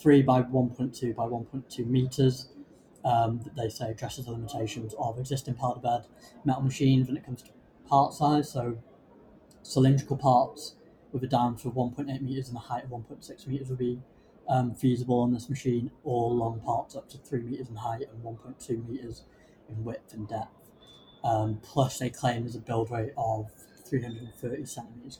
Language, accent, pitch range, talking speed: English, British, 120-135 Hz, 175 wpm